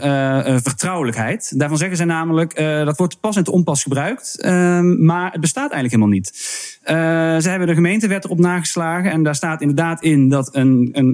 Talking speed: 195 wpm